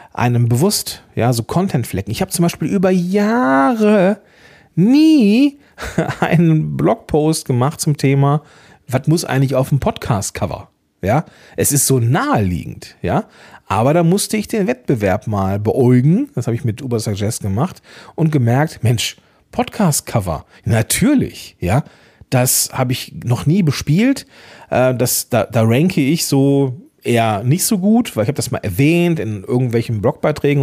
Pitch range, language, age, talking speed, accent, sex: 110-165 Hz, German, 40-59, 145 wpm, German, male